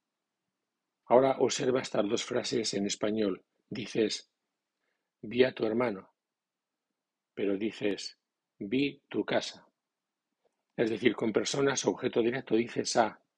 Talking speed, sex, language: 110 wpm, male, Spanish